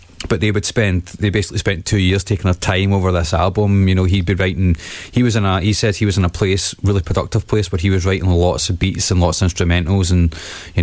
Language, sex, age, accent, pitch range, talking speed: English, male, 20-39, British, 90-105 Hz, 260 wpm